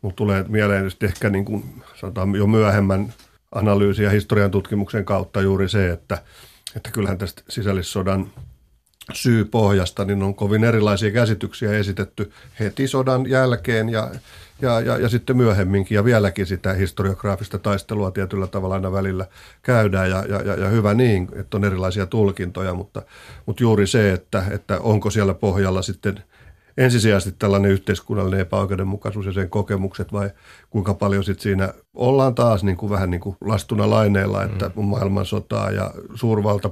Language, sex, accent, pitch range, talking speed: Finnish, male, native, 95-110 Hz, 145 wpm